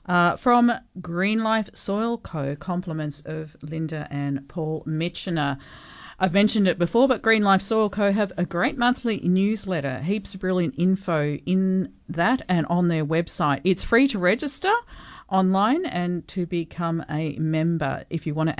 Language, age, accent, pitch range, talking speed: English, 40-59, Australian, 150-195 Hz, 160 wpm